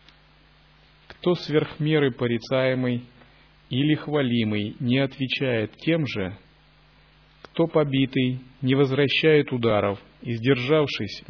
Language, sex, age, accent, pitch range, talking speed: Russian, male, 30-49, native, 110-135 Hz, 85 wpm